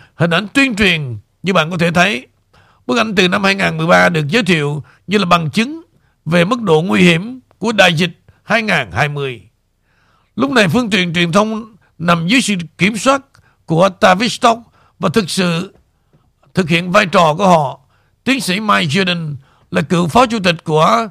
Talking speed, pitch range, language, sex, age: 175 wpm, 155-215 Hz, Vietnamese, male, 60-79